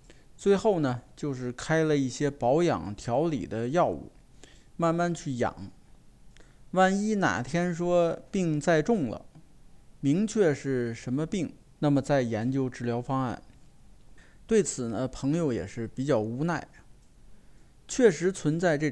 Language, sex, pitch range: Chinese, male, 125-175 Hz